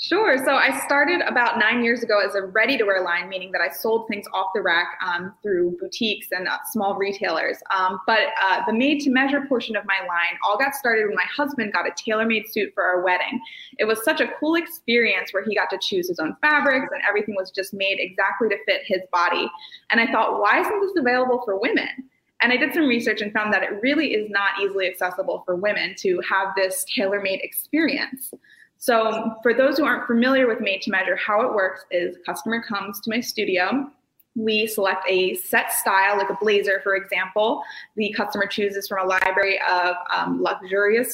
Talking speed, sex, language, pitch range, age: 205 wpm, female, English, 195-240 Hz, 20-39